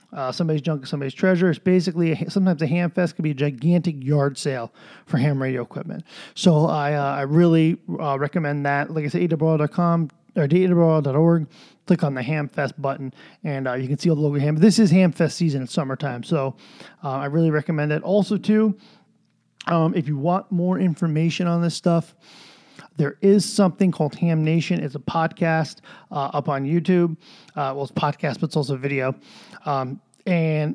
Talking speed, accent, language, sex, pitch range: 195 wpm, American, English, male, 145-180 Hz